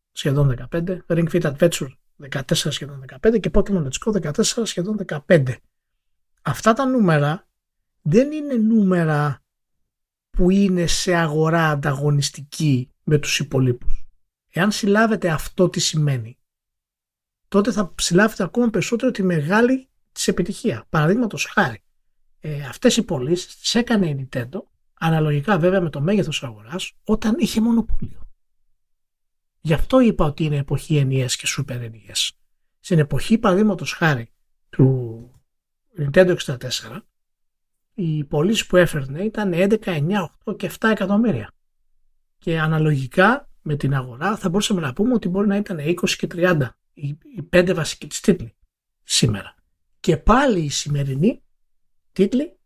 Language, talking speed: Greek, 130 wpm